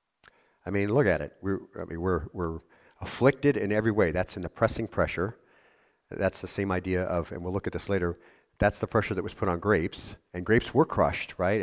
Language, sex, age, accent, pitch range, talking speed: English, male, 50-69, American, 90-115 Hz, 205 wpm